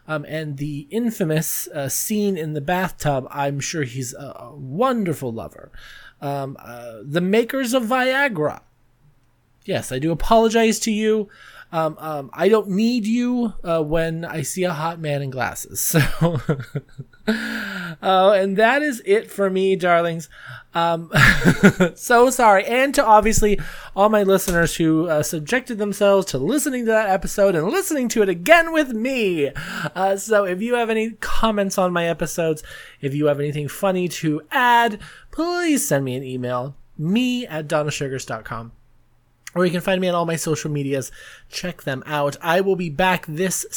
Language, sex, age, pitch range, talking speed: English, male, 20-39, 155-235 Hz, 165 wpm